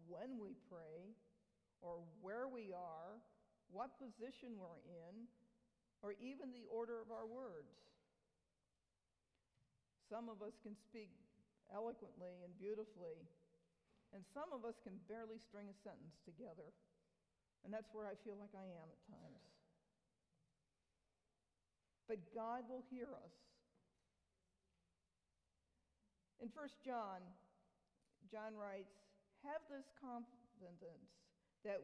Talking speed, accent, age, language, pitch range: 115 wpm, American, 50-69, English, 180-230 Hz